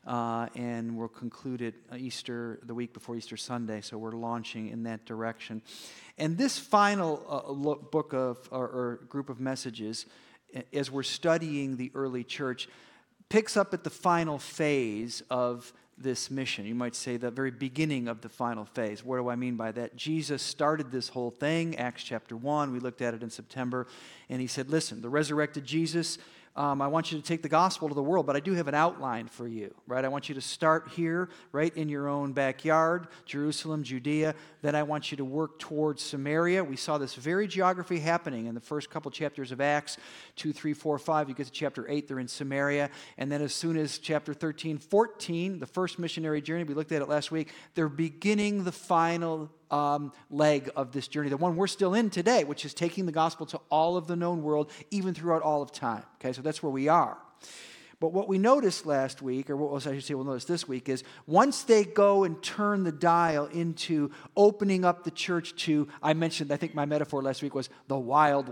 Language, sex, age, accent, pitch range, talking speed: English, male, 40-59, American, 130-165 Hz, 210 wpm